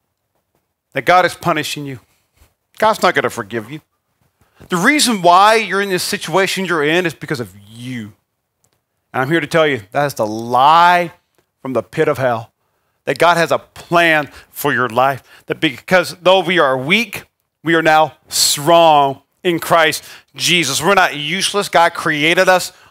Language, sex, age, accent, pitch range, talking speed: English, male, 40-59, American, 155-210 Hz, 170 wpm